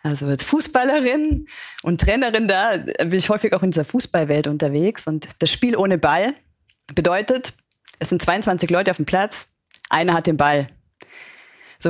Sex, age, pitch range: female, 30-49, 175-225 Hz